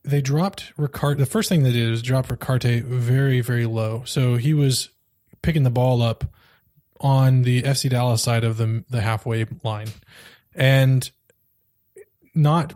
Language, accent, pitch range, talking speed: English, American, 125-140 Hz, 155 wpm